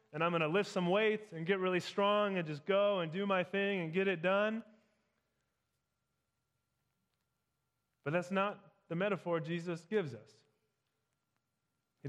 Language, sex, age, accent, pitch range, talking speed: English, male, 20-39, American, 140-180 Hz, 155 wpm